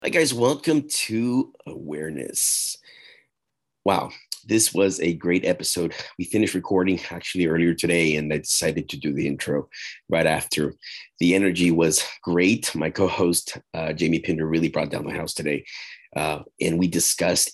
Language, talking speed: English, 155 wpm